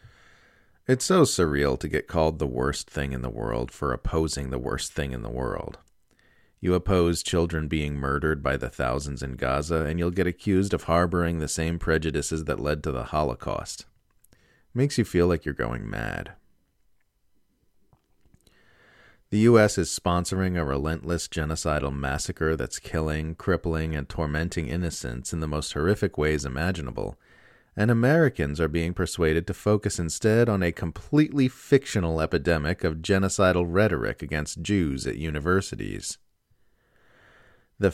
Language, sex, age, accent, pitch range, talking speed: English, male, 30-49, American, 75-95 Hz, 145 wpm